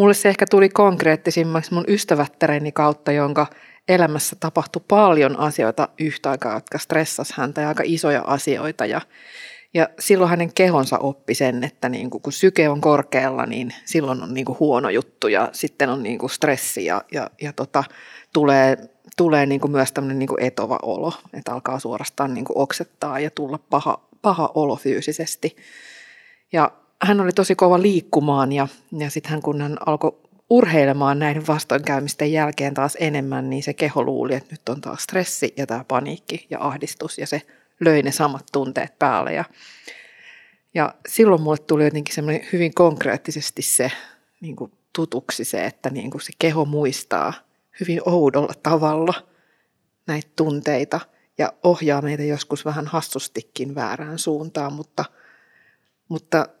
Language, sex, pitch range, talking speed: Finnish, female, 140-170 Hz, 150 wpm